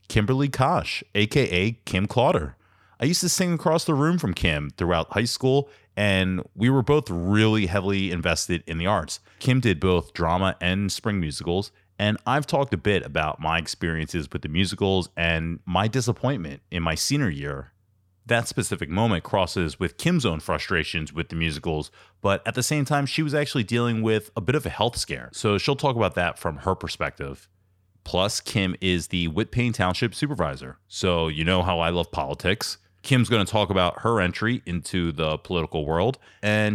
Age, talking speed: 30-49, 185 wpm